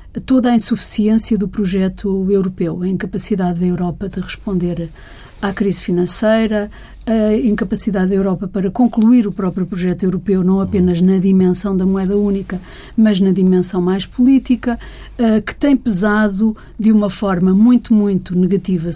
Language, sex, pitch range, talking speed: Portuguese, female, 185-230 Hz, 145 wpm